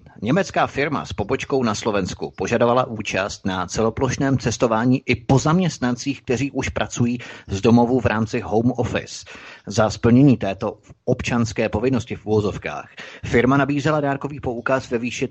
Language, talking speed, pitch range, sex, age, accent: Czech, 140 wpm, 110-130 Hz, male, 30-49, native